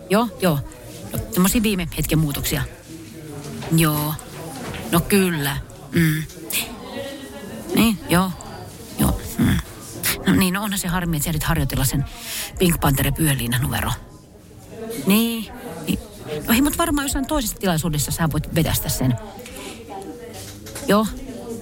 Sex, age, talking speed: female, 40-59, 120 wpm